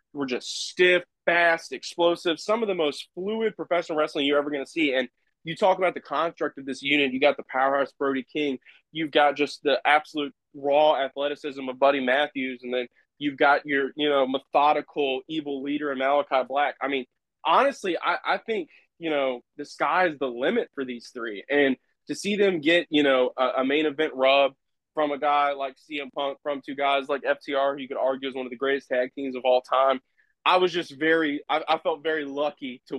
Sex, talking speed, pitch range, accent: male, 210 wpm, 135-155 Hz, American